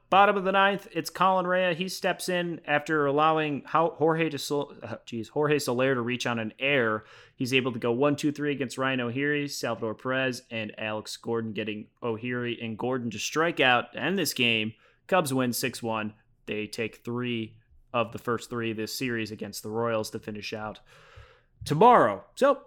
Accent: American